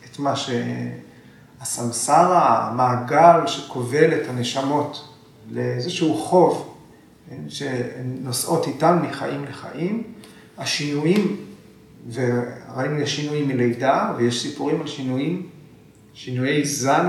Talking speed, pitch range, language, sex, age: 75 wpm, 125-155 Hz, Hebrew, male, 40-59